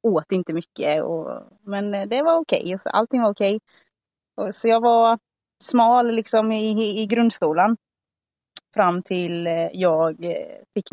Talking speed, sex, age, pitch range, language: 135 wpm, female, 30-49, 185-225 Hz, Swedish